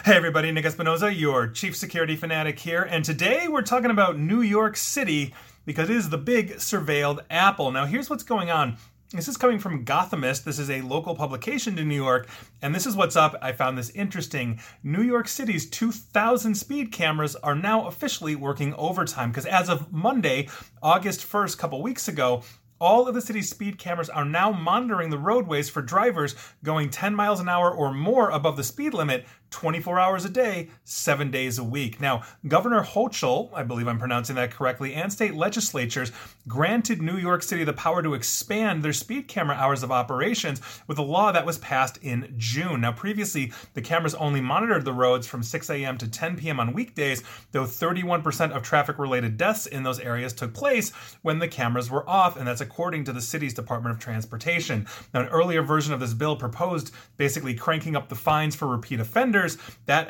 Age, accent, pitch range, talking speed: 30-49, American, 130-185 Hz, 195 wpm